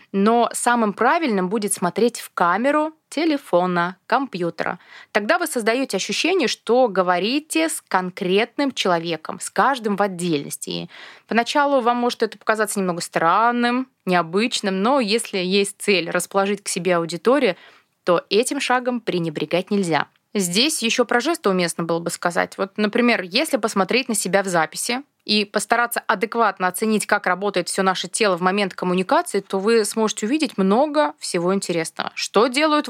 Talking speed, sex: 145 wpm, female